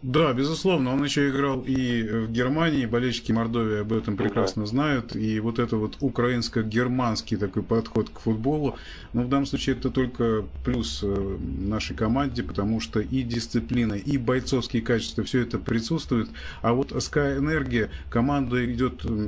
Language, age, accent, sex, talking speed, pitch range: Russian, 30-49, native, male, 155 wpm, 110-130 Hz